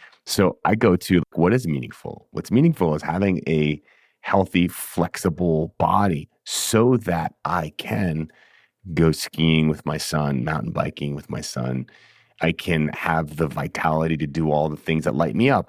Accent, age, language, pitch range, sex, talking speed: American, 30-49, English, 75-90 Hz, male, 165 wpm